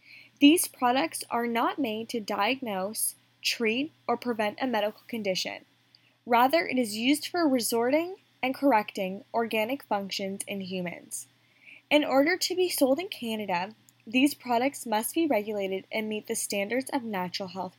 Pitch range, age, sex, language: 205-270 Hz, 10-29, female, English